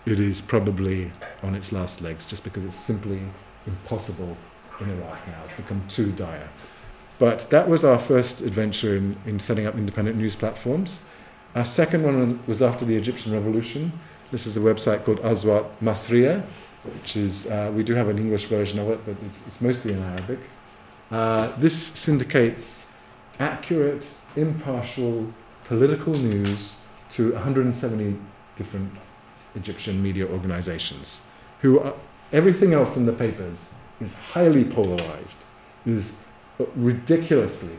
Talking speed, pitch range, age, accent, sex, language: 140 wpm, 95-120 Hz, 30-49, British, male, English